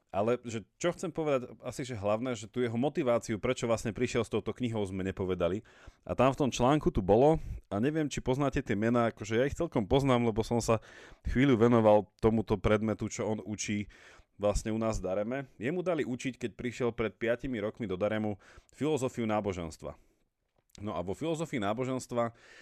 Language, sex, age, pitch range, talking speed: Slovak, male, 30-49, 95-120 Hz, 185 wpm